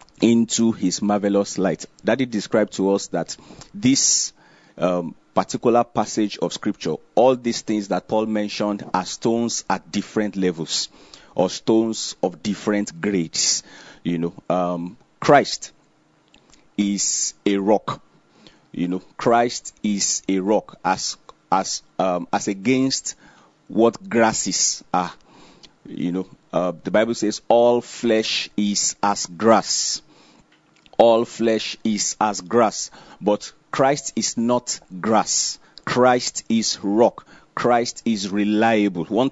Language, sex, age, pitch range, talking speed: English, male, 40-59, 95-115 Hz, 125 wpm